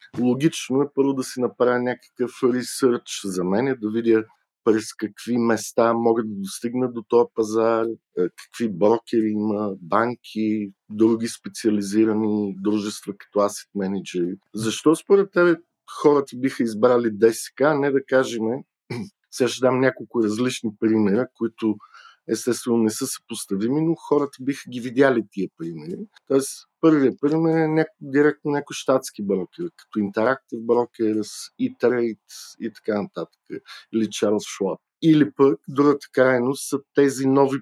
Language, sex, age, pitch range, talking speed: Bulgarian, male, 50-69, 110-135 Hz, 140 wpm